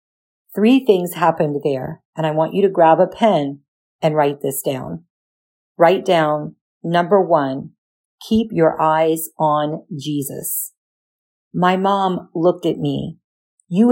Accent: American